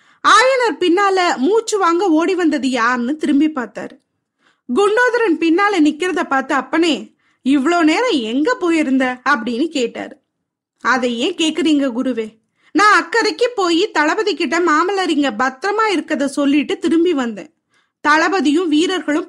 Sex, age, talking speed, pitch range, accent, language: female, 20-39, 110 wpm, 285-375 Hz, native, Tamil